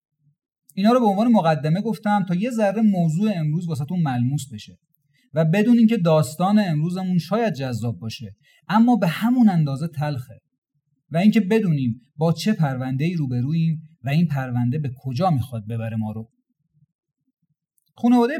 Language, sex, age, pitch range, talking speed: Persian, male, 30-49, 140-185 Hz, 145 wpm